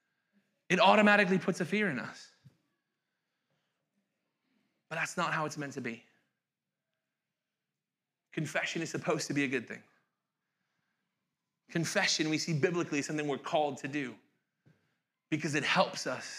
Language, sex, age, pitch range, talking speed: English, male, 20-39, 140-195 Hz, 135 wpm